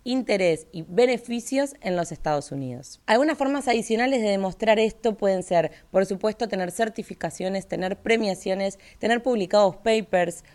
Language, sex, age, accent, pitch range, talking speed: Spanish, female, 20-39, Argentinian, 180-230 Hz, 135 wpm